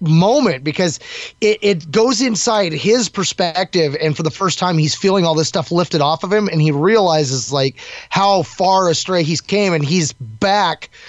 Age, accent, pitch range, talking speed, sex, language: 20-39, American, 155-200 Hz, 185 wpm, male, English